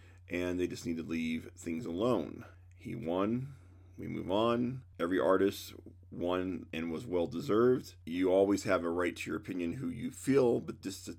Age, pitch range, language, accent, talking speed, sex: 40-59, 90-110 Hz, English, American, 180 wpm, male